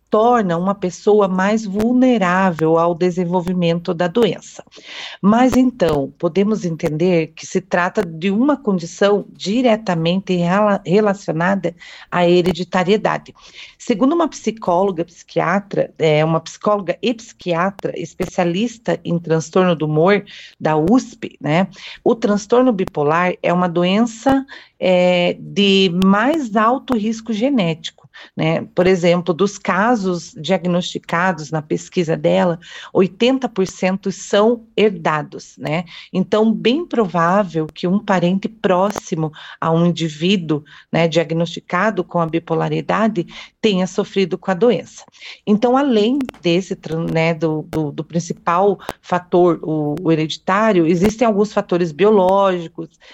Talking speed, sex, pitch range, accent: 115 wpm, female, 170-210 Hz, Brazilian